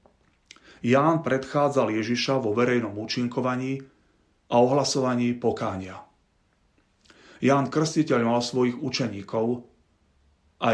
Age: 40-59